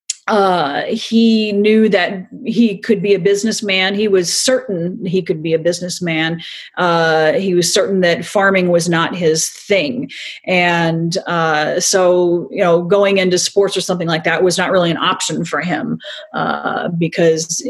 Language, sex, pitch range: English, female, 165-200 Hz